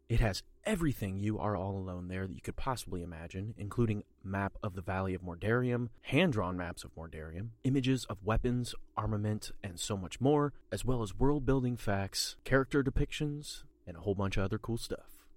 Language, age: English, 30-49